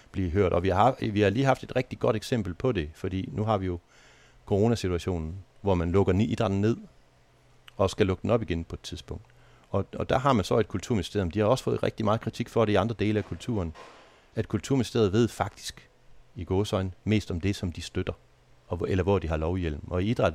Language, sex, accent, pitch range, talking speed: Danish, male, native, 90-110 Hz, 225 wpm